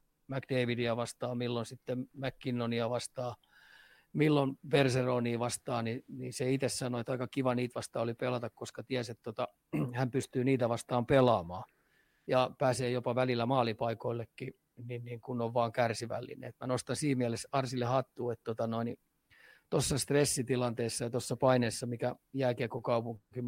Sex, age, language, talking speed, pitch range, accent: male, 30-49, Finnish, 145 wpm, 120-130 Hz, native